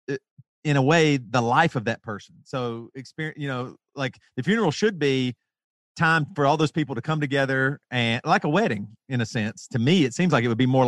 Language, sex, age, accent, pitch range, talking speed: English, male, 40-59, American, 120-150 Hz, 225 wpm